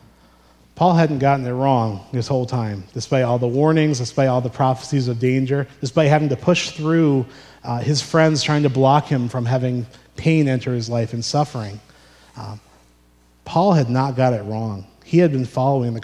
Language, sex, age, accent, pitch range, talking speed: English, male, 30-49, American, 115-145 Hz, 185 wpm